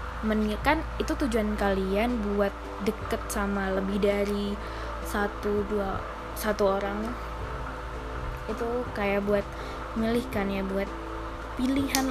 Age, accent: 20-39, native